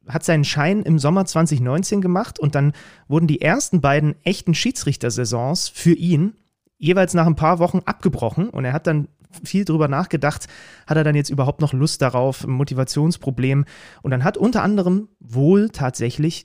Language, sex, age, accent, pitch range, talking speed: German, male, 30-49, German, 130-170 Hz, 170 wpm